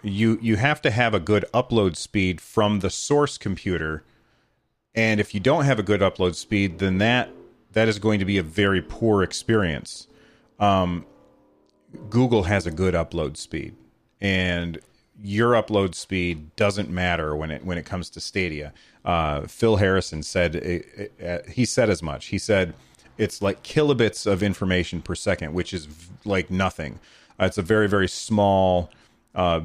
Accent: American